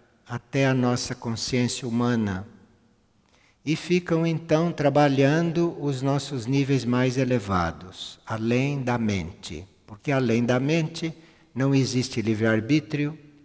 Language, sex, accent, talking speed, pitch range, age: Portuguese, male, Brazilian, 105 wpm, 115-140 Hz, 60-79